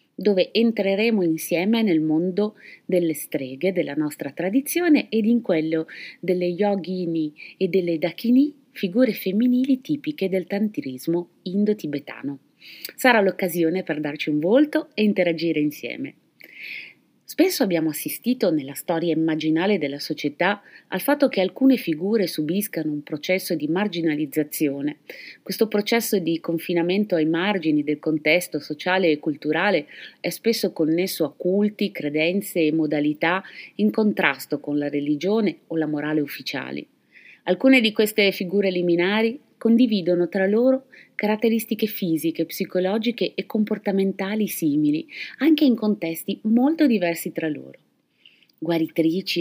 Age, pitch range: 30-49, 160-215 Hz